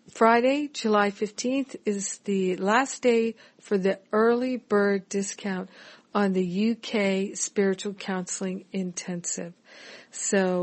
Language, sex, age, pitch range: English, female, 50-69, 185-235 Hz